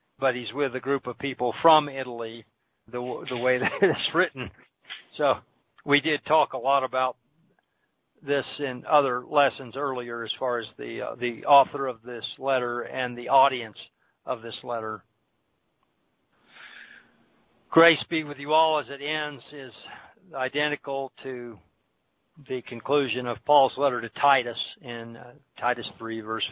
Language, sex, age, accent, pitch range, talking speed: English, male, 60-79, American, 125-150 Hz, 150 wpm